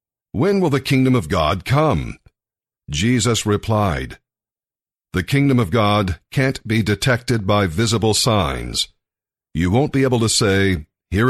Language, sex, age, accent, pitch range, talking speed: English, male, 50-69, American, 100-130 Hz, 140 wpm